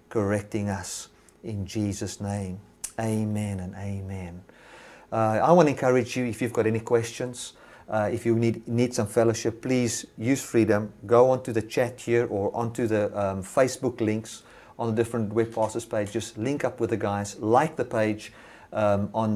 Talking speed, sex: 180 wpm, male